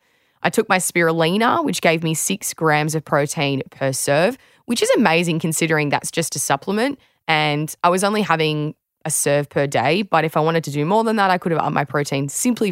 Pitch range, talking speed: 150-195 Hz, 215 wpm